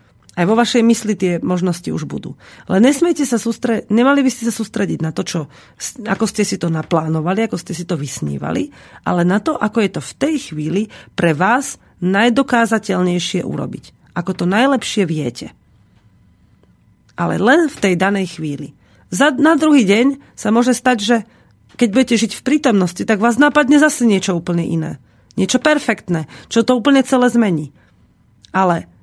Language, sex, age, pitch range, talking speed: Slovak, female, 40-59, 170-245 Hz, 165 wpm